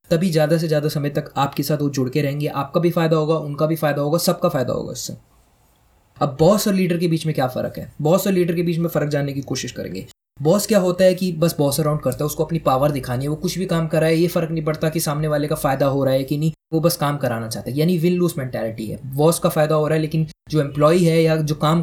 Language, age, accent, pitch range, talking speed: Hindi, 20-39, native, 145-175 Hz, 285 wpm